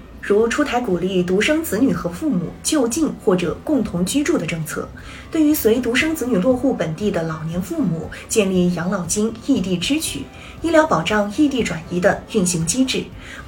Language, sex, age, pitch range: Chinese, female, 20-39, 180-275 Hz